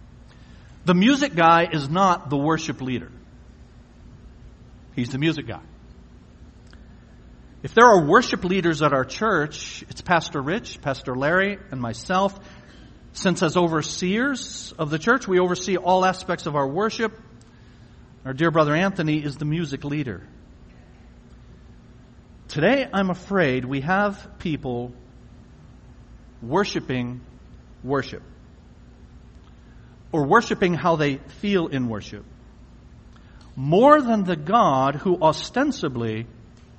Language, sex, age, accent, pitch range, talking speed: English, male, 50-69, American, 125-190 Hz, 115 wpm